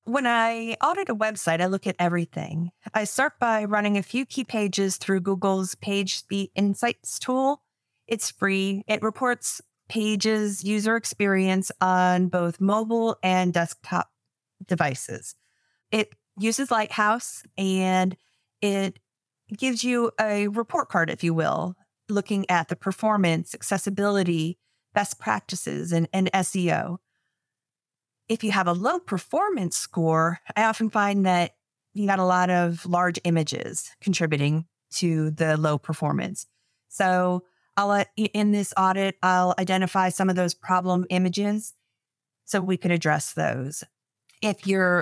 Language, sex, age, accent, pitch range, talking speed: English, female, 30-49, American, 175-210 Hz, 135 wpm